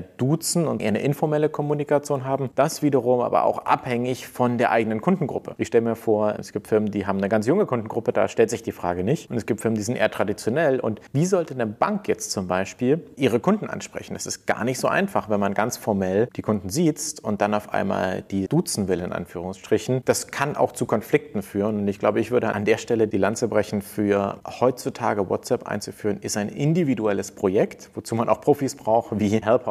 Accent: German